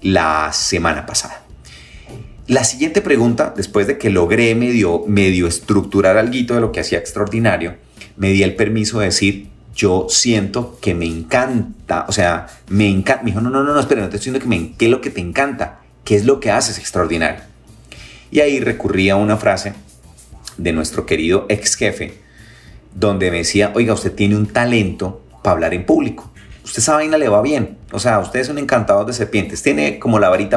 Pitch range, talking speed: 95-120 Hz, 195 wpm